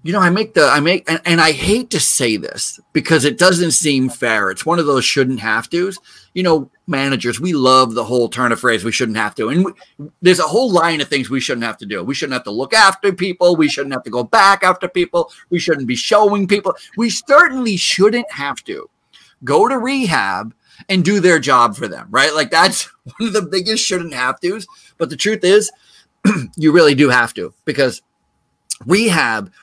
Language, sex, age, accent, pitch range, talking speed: English, male, 30-49, American, 135-210 Hz, 220 wpm